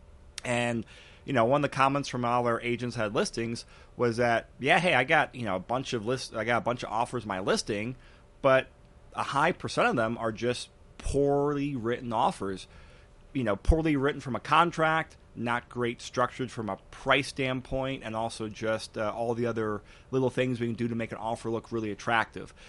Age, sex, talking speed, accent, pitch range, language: 30-49, male, 205 wpm, American, 110-135 Hz, English